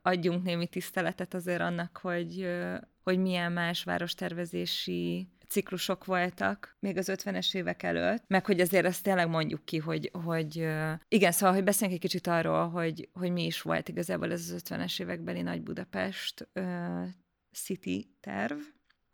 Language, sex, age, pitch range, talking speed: Hungarian, female, 20-39, 155-190 Hz, 150 wpm